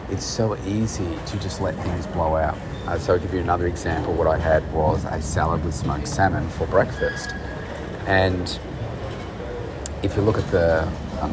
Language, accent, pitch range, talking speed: English, Australian, 80-100 Hz, 180 wpm